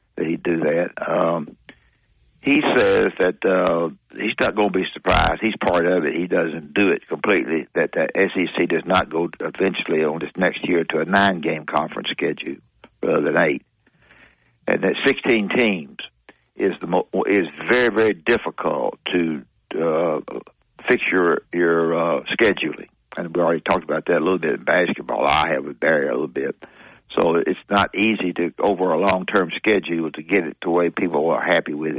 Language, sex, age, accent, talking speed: English, male, 60-79, American, 180 wpm